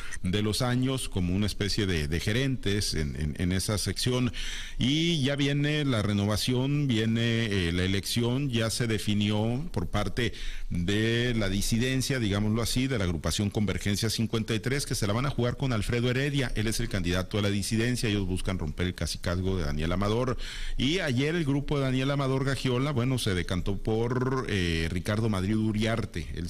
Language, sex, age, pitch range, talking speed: Spanish, male, 50-69, 95-130 Hz, 180 wpm